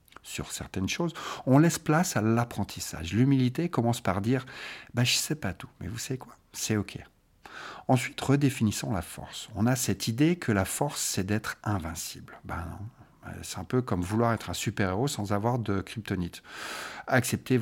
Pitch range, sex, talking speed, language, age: 100-140 Hz, male, 180 wpm, French, 50-69